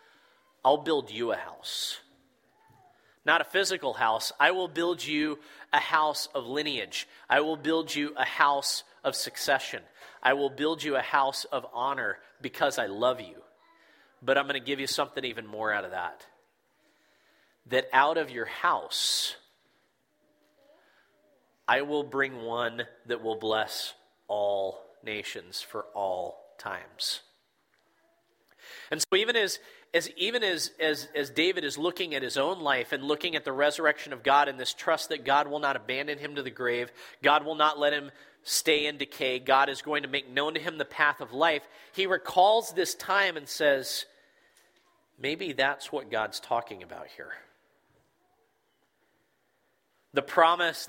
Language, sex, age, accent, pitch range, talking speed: English, male, 30-49, American, 135-175 Hz, 160 wpm